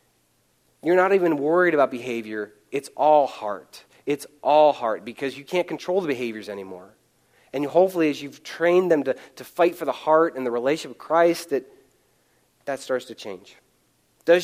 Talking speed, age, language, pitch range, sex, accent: 175 wpm, 30-49, English, 115-150 Hz, male, American